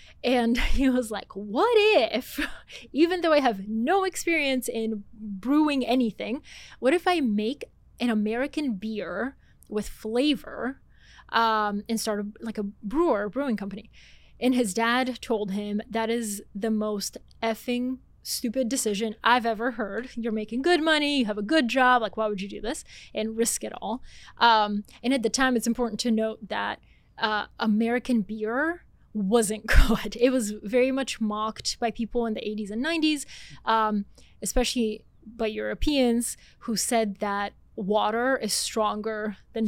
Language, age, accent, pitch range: English, 20-39, American, 215-255 Hz